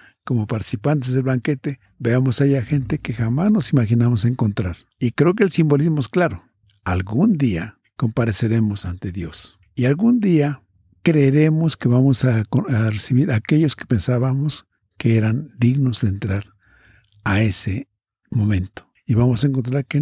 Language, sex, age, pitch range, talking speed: Spanish, male, 50-69, 110-145 Hz, 150 wpm